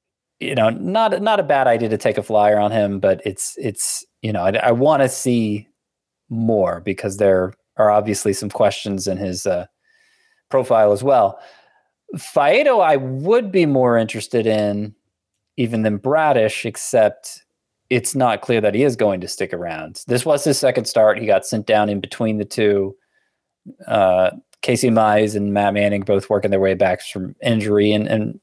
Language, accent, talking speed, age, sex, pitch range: English, American, 180 wpm, 20-39, male, 100-125 Hz